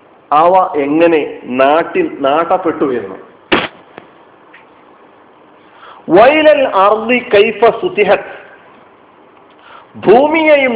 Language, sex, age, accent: Malayalam, male, 40-59, native